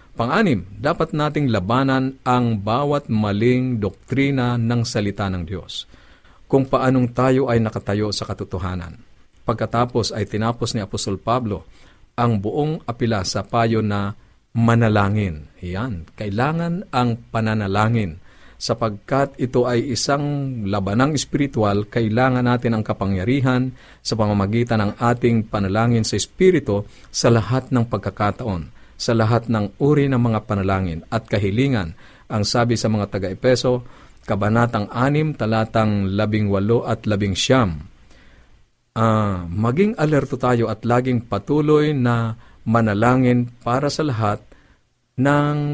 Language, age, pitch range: Filipino, 50-69, 105-130 Hz